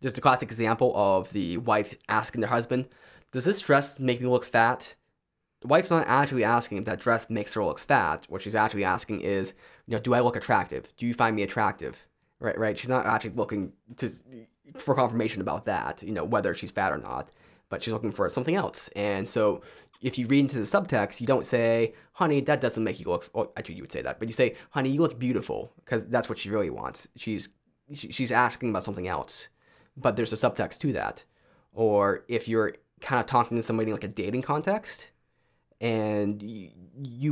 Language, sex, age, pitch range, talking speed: English, male, 20-39, 110-135 Hz, 210 wpm